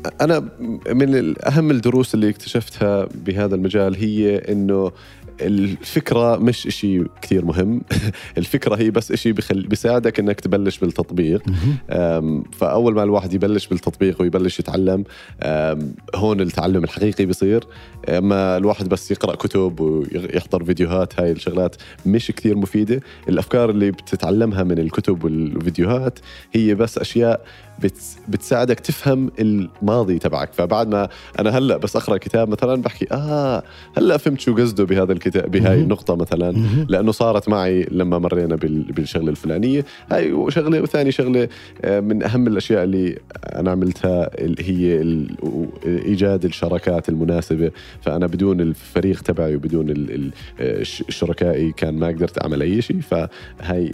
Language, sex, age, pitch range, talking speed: Arabic, male, 30-49, 85-110 Hz, 125 wpm